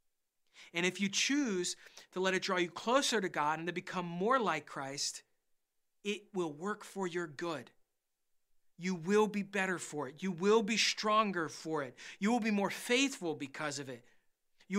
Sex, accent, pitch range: male, American, 145-190 Hz